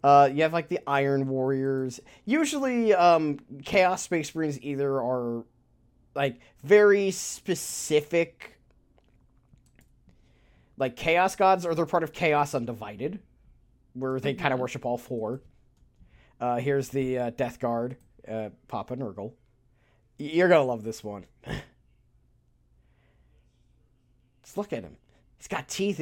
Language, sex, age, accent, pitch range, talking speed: English, male, 30-49, American, 120-155 Hz, 125 wpm